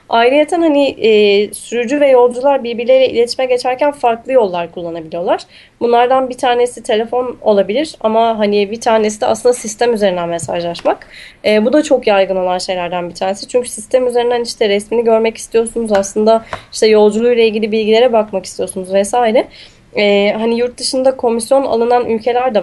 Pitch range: 210-250 Hz